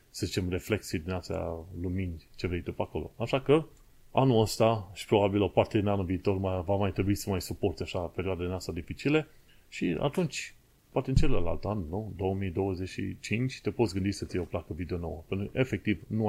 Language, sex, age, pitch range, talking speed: Romanian, male, 30-49, 90-115 Hz, 205 wpm